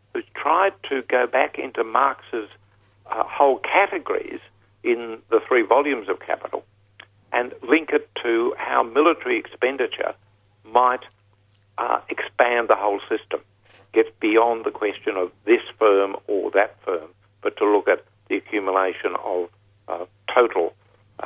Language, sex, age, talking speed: English, male, 60-79, 135 wpm